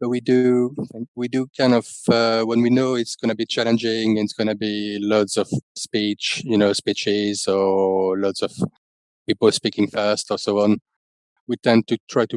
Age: 30-49